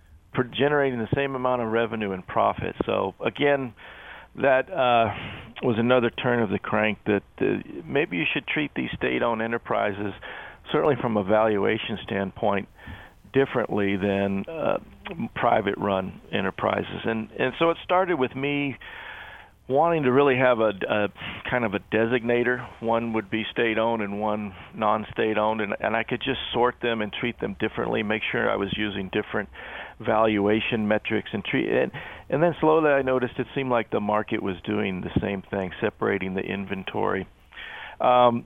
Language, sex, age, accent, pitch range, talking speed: English, male, 50-69, American, 105-125 Hz, 160 wpm